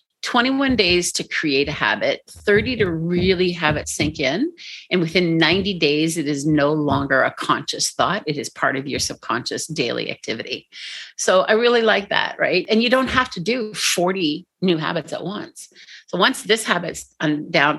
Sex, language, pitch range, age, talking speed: female, English, 165-220 Hz, 40-59, 180 wpm